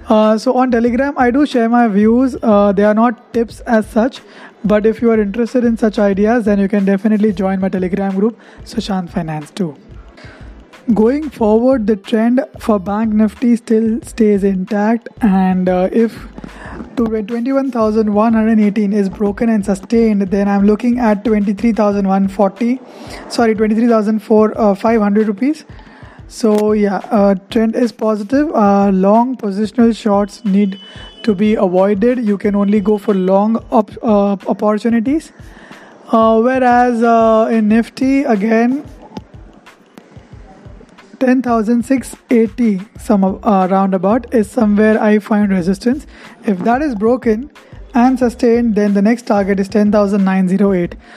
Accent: native